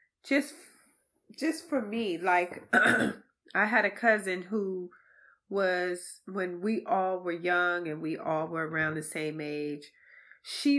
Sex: female